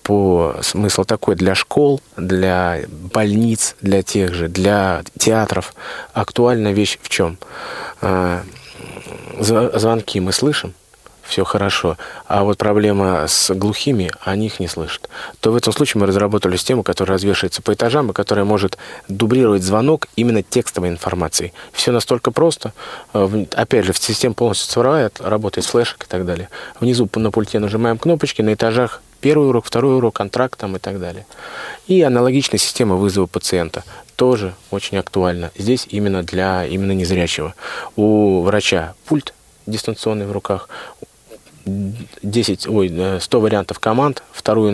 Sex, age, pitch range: male, 20-39, 95-115 Hz